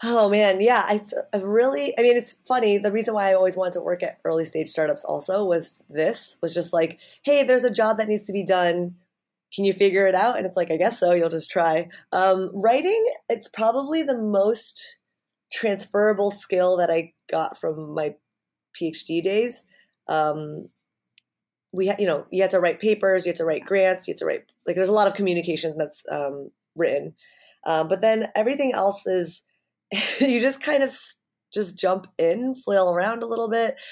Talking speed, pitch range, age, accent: 195 wpm, 165-215 Hz, 30-49, American